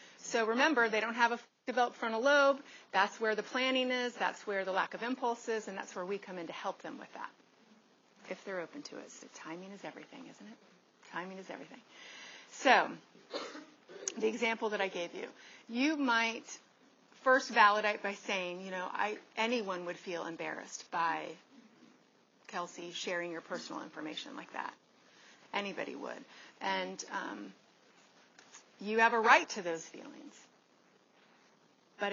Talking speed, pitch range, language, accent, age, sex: 155 wpm, 185-235 Hz, English, American, 30-49, female